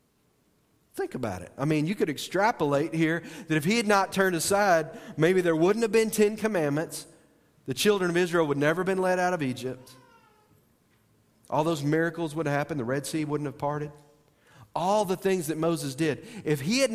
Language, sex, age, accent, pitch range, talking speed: English, male, 40-59, American, 120-165 Hz, 200 wpm